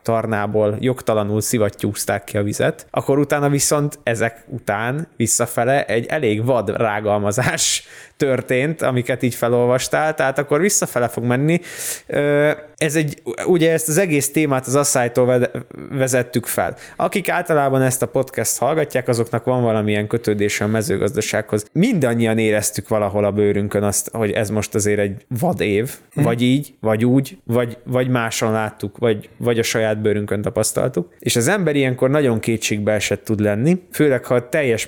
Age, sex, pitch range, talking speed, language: 20-39, male, 115-145 Hz, 150 wpm, Hungarian